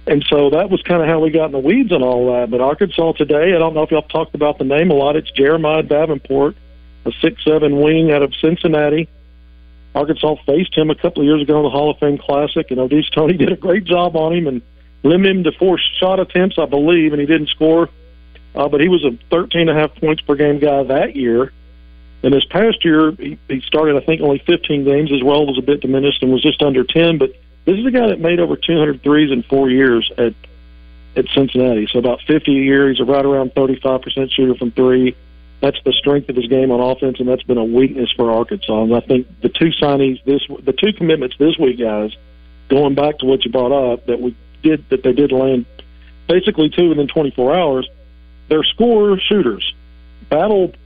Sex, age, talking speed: male, 50-69, 230 wpm